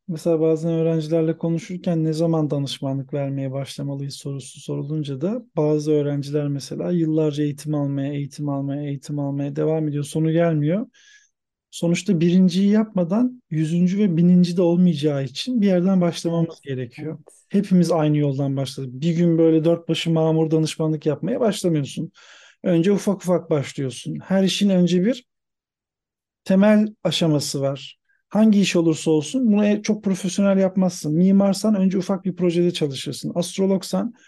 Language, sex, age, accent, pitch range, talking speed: Turkish, male, 40-59, native, 155-195 Hz, 135 wpm